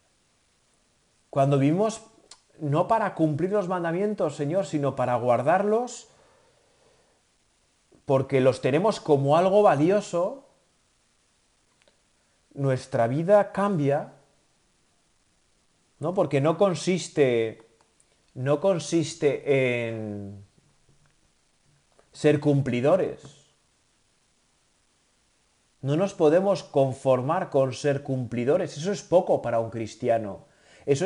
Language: Spanish